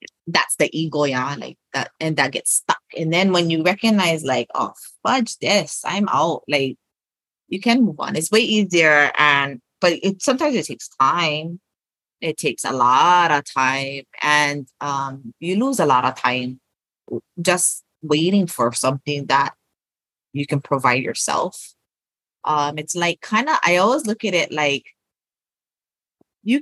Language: English